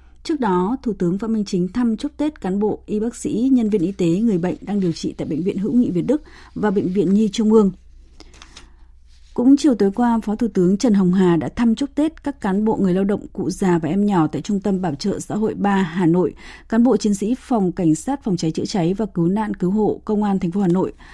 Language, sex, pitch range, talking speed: Vietnamese, female, 175-220 Hz, 265 wpm